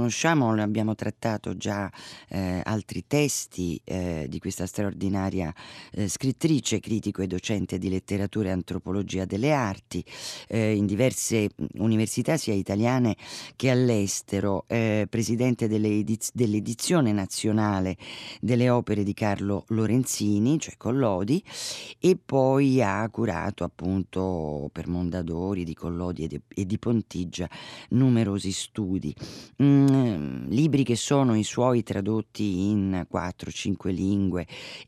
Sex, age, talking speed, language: female, 40-59, 115 wpm, Italian